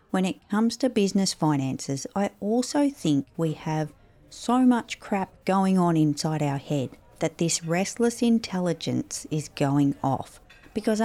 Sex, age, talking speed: female, 40-59, 145 wpm